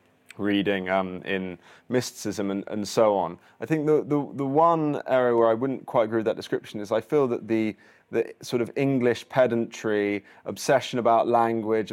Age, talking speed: 20-39, 180 wpm